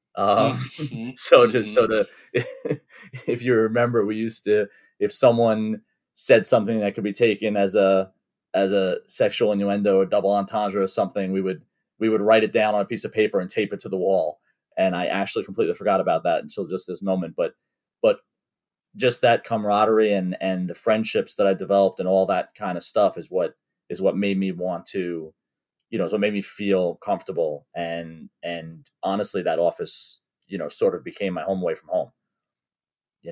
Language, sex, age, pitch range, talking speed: English, male, 30-49, 85-110 Hz, 200 wpm